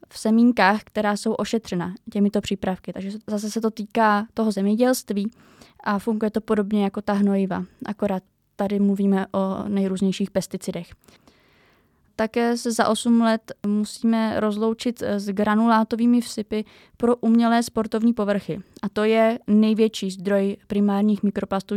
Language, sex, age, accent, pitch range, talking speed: Czech, female, 20-39, native, 195-225 Hz, 130 wpm